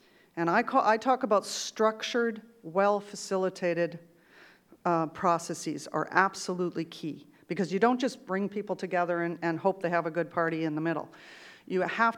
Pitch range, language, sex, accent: 170-205 Hz, English, female, American